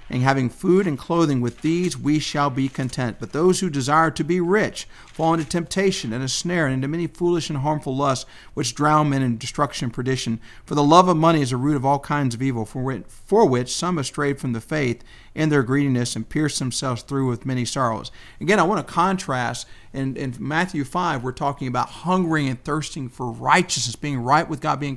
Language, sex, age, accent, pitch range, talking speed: English, male, 50-69, American, 130-165 Hz, 220 wpm